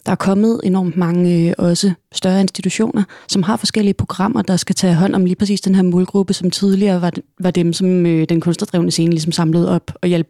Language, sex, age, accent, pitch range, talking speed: Danish, female, 30-49, native, 175-195 Hz, 220 wpm